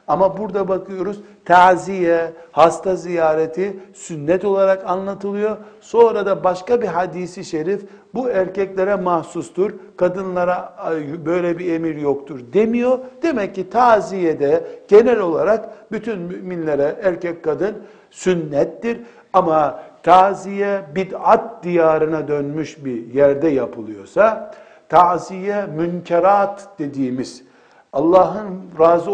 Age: 60-79